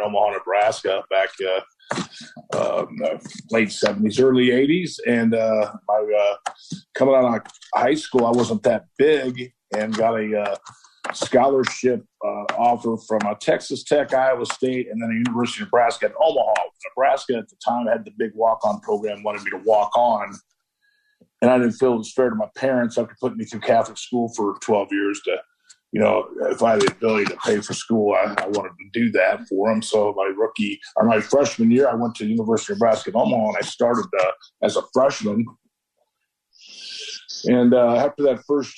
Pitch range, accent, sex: 105-135 Hz, American, male